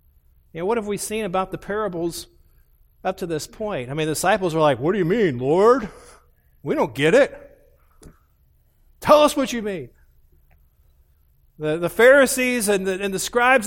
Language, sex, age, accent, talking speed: English, male, 40-59, American, 165 wpm